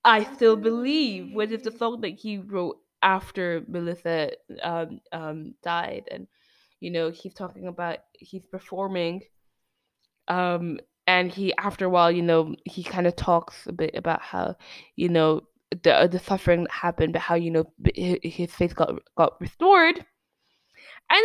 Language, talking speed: English, 160 wpm